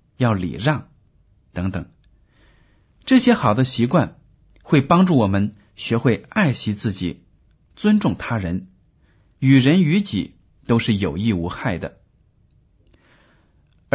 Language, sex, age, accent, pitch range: Chinese, male, 50-69, native, 100-150 Hz